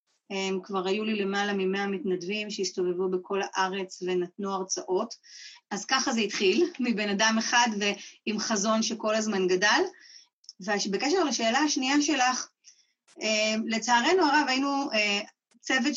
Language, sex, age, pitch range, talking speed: Hebrew, female, 30-49, 200-245 Hz, 115 wpm